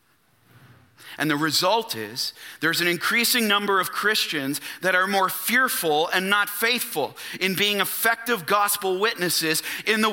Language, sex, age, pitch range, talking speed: English, male, 40-59, 185-240 Hz, 140 wpm